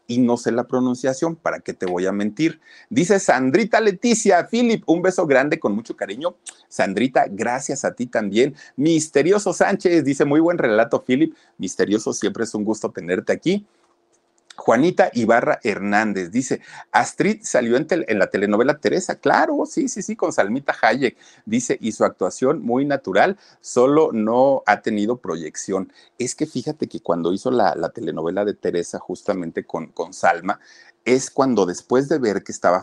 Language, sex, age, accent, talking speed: Spanish, male, 40-59, Mexican, 165 wpm